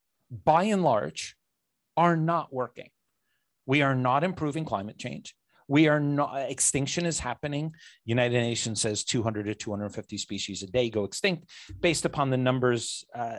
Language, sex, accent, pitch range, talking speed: English, male, American, 110-145 Hz, 150 wpm